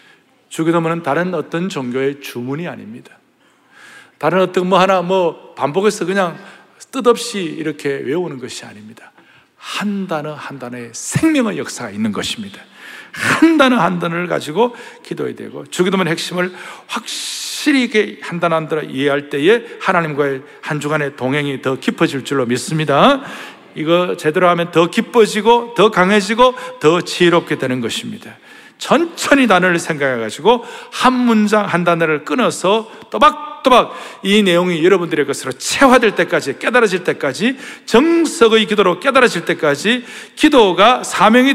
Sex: male